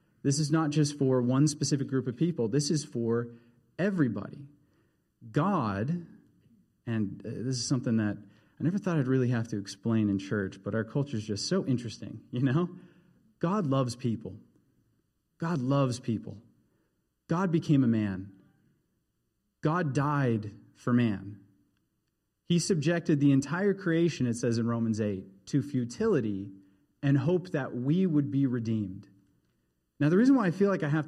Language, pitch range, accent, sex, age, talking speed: English, 115-155 Hz, American, male, 30-49, 155 wpm